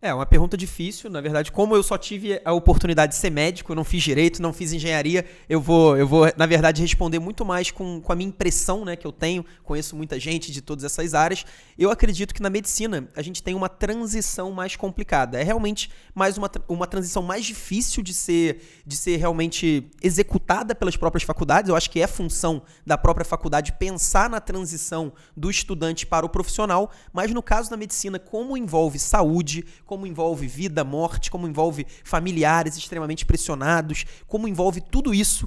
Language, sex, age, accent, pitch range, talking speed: Portuguese, male, 20-39, Brazilian, 160-195 Hz, 190 wpm